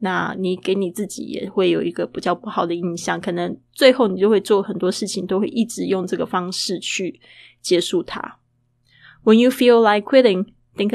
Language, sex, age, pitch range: Chinese, female, 20-39, 175-205 Hz